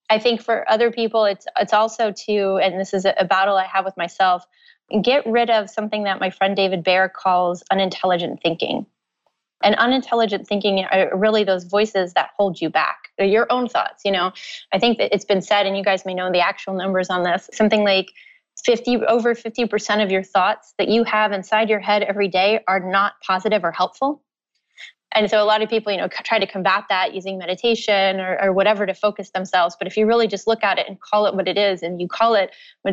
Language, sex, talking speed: English, female, 225 wpm